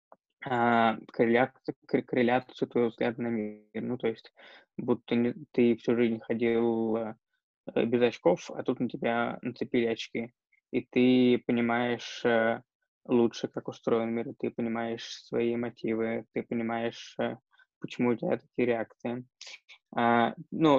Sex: male